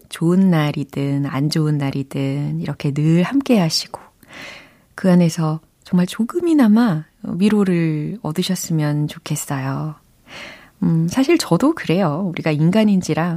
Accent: native